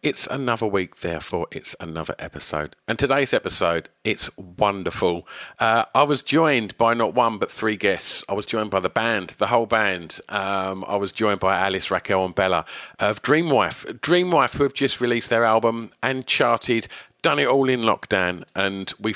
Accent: British